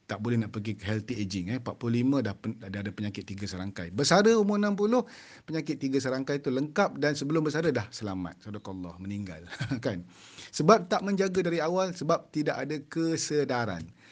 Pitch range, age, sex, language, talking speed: 100-140 Hz, 40-59, male, Malay, 165 wpm